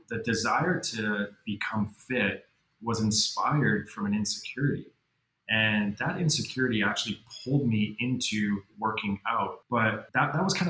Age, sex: 20-39, male